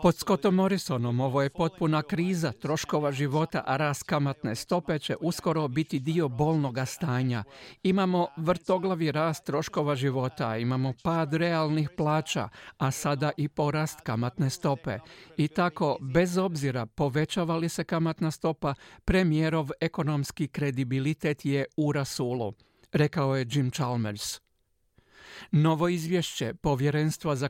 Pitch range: 135-165 Hz